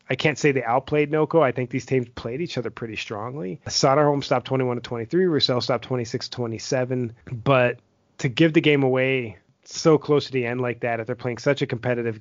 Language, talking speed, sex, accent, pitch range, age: English, 230 wpm, male, American, 120-140 Hz, 30-49